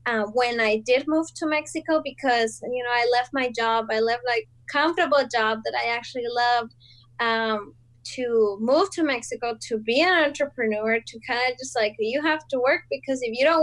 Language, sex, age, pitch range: English, female, 20-39, 220-275 Hz